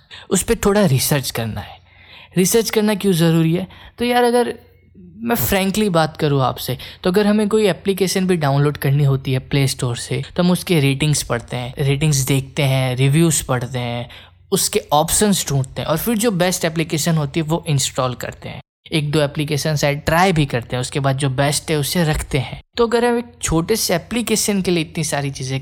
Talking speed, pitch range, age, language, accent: 205 wpm, 135-185 Hz, 10-29, Hindi, native